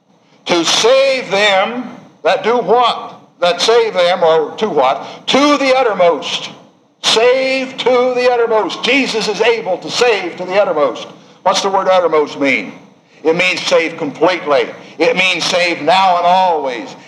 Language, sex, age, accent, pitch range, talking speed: English, male, 60-79, American, 185-260 Hz, 150 wpm